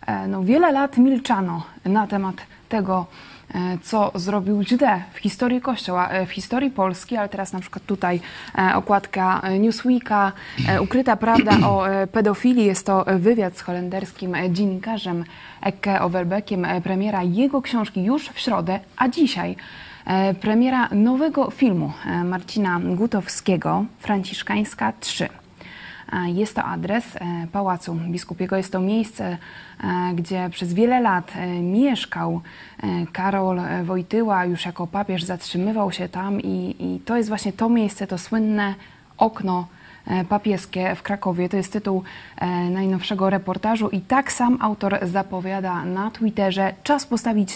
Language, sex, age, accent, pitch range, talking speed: Polish, female, 20-39, native, 185-225 Hz, 120 wpm